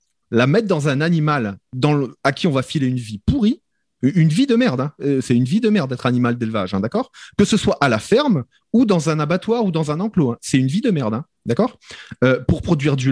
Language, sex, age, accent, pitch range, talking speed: French, male, 30-49, French, 130-195 Hz, 260 wpm